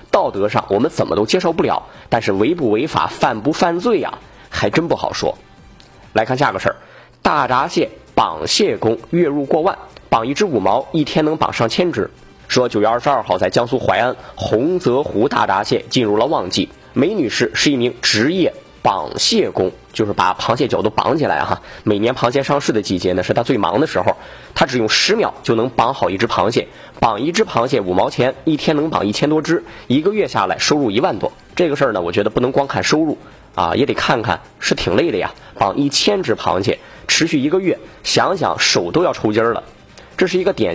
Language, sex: Chinese, male